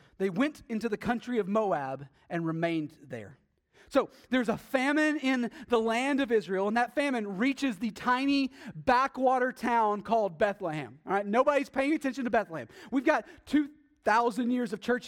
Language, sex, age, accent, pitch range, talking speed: English, male, 30-49, American, 160-245 Hz, 165 wpm